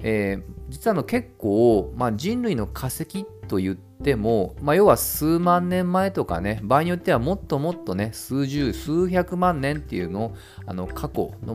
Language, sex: Japanese, male